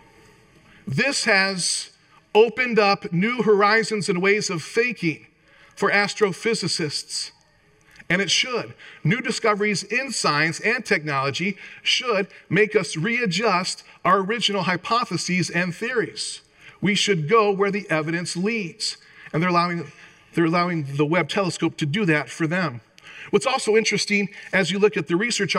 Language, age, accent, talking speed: English, 40-59, American, 140 wpm